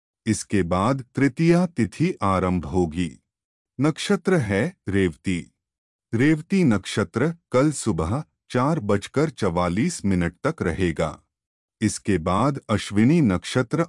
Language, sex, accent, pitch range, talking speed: Hindi, male, native, 90-150 Hz, 100 wpm